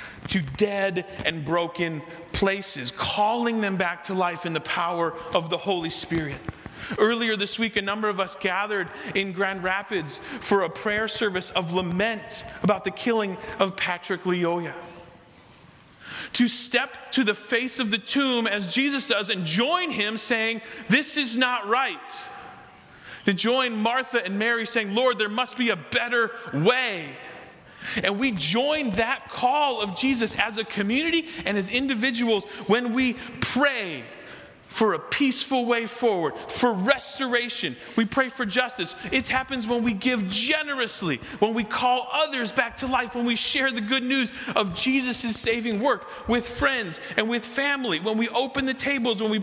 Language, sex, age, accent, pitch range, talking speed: English, male, 40-59, American, 195-250 Hz, 165 wpm